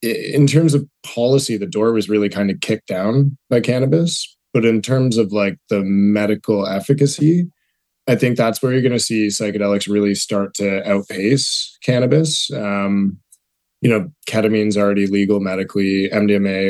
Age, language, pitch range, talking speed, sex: 20-39, English, 100-120 Hz, 160 wpm, male